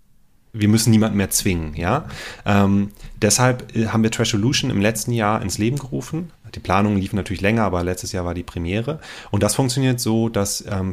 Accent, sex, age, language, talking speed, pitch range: German, male, 30-49, German, 185 wpm, 100-115 Hz